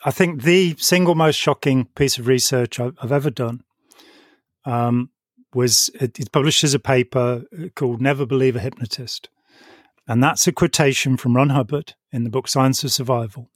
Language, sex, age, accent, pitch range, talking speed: English, male, 40-59, British, 125-150 Hz, 170 wpm